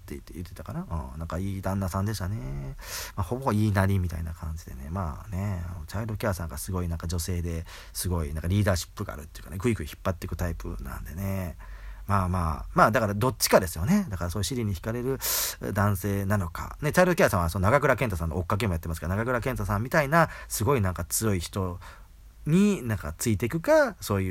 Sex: male